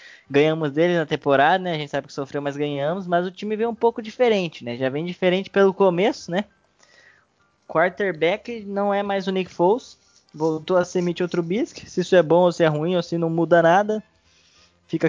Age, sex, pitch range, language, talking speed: 10-29, male, 140-175 Hz, Portuguese, 205 wpm